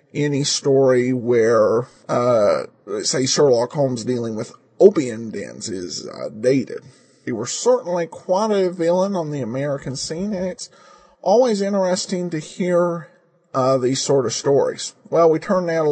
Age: 40-59